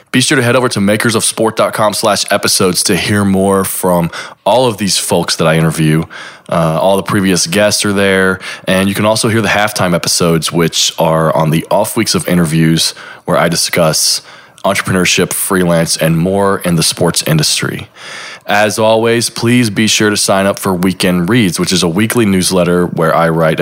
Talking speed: 185 wpm